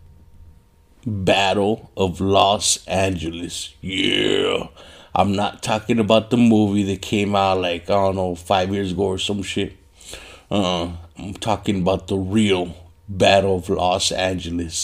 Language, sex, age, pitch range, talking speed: English, male, 50-69, 90-110 Hz, 135 wpm